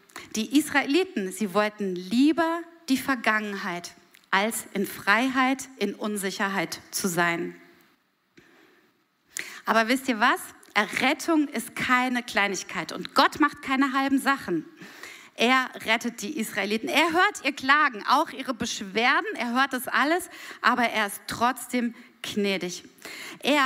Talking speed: 125 wpm